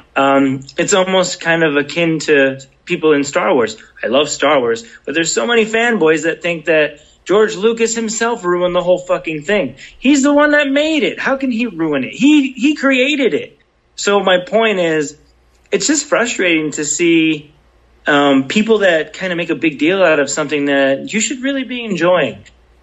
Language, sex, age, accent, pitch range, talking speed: English, male, 30-49, American, 135-185 Hz, 190 wpm